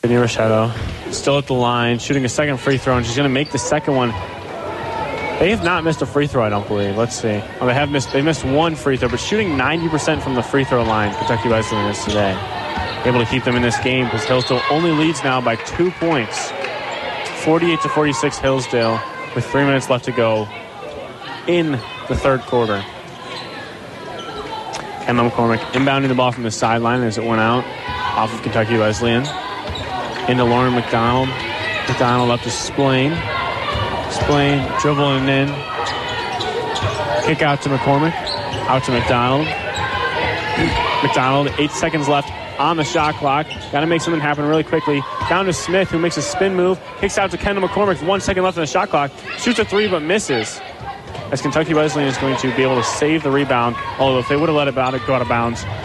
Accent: American